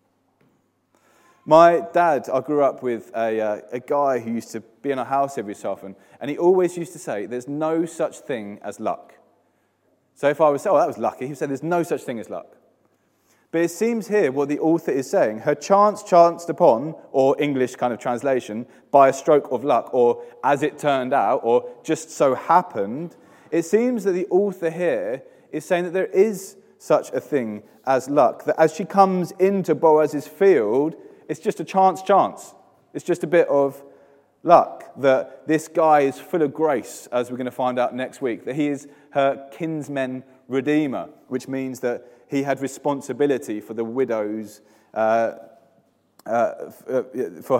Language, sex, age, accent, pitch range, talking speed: English, male, 30-49, British, 125-170 Hz, 185 wpm